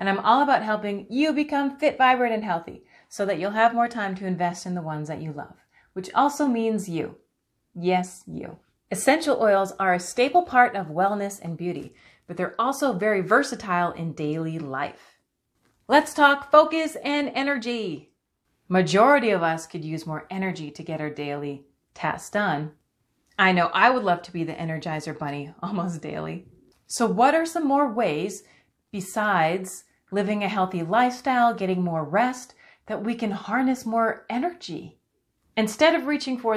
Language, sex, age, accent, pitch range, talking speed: English, female, 30-49, American, 180-250 Hz, 170 wpm